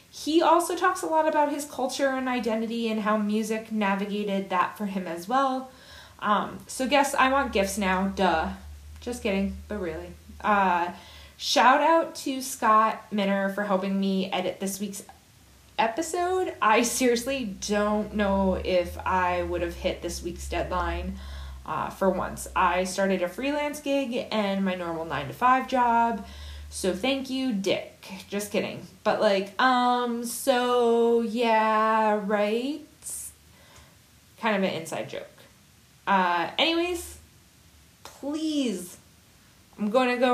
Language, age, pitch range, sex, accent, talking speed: English, 20-39, 190-255 Hz, female, American, 140 wpm